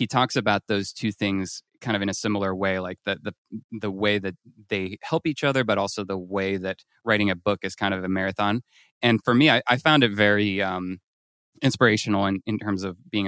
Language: English